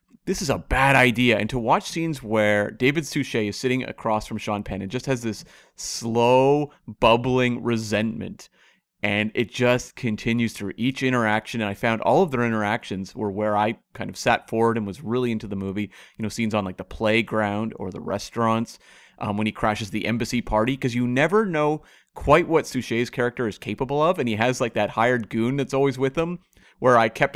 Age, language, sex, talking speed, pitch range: 30-49, English, male, 205 wpm, 110-140 Hz